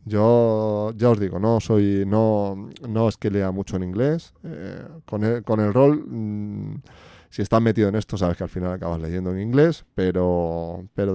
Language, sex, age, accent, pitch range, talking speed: Spanish, male, 20-39, Spanish, 95-115 Hz, 195 wpm